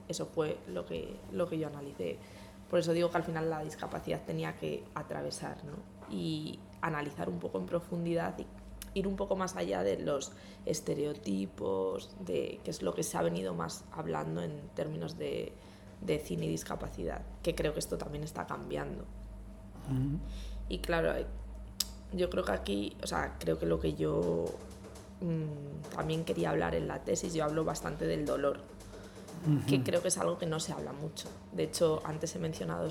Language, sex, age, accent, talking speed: English, female, 20-39, Spanish, 180 wpm